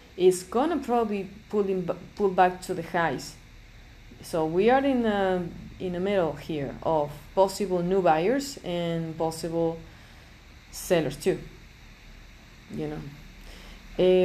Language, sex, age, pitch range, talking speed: English, female, 20-39, 170-205 Hz, 130 wpm